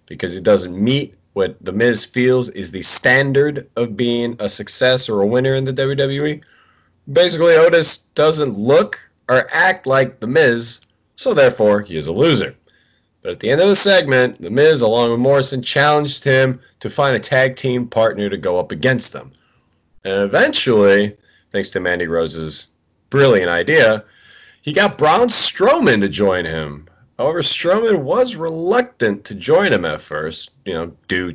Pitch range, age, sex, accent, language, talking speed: 105-155 Hz, 30-49, male, American, English, 170 wpm